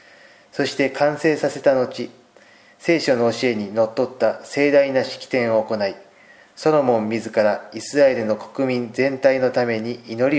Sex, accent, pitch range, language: male, native, 115-140 Hz, Japanese